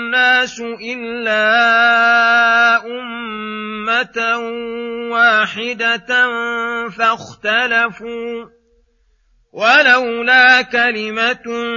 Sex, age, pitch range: male, 40-59, 210-235 Hz